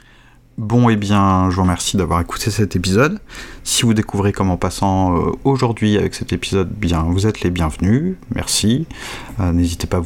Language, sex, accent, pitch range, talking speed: French, male, French, 90-105 Hz, 175 wpm